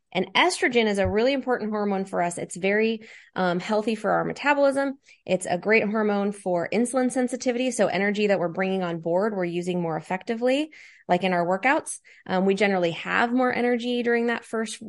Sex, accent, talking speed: female, American, 190 wpm